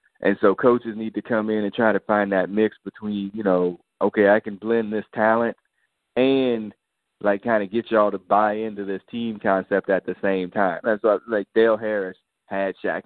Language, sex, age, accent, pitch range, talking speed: English, male, 20-39, American, 95-115 Hz, 200 wpm